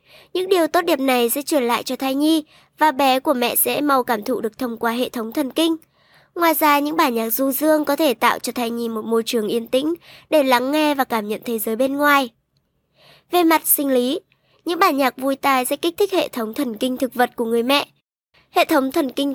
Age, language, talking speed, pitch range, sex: 20-39, Vietnamese, 245 wpm, 250-315 Hz, male